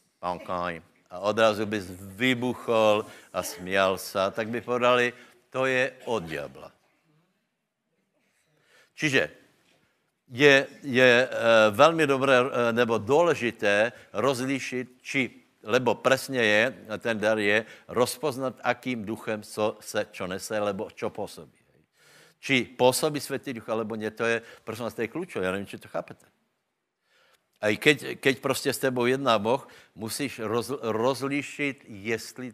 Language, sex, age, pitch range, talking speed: Slovak, male, 60-79, 110-135 Hz, 125 wpm